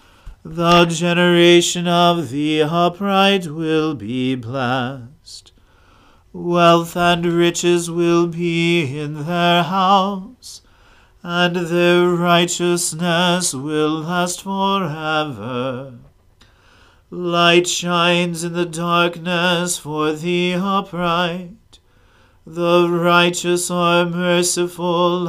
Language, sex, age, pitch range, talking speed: English, male, 40-59, 150-175 Hz, 80 wpm